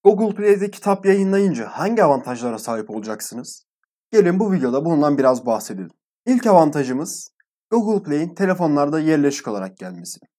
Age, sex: 20-39, male